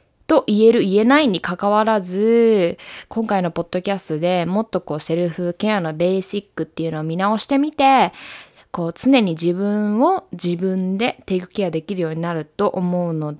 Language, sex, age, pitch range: Japanese, female, 20-39, 170-230 Hz